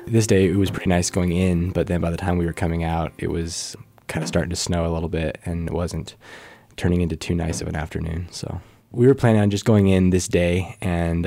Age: 20-39